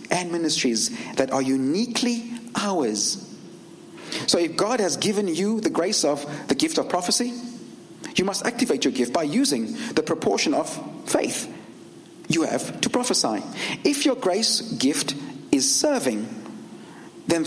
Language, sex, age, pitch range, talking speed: English, male, 50-69, 160-250 Hz, 140 wpm